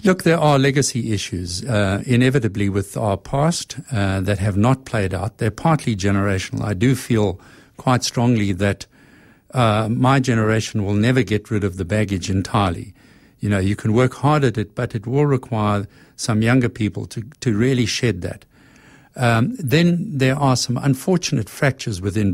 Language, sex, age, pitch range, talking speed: English, male, 60-79, 105-135 Hz, 170 wpm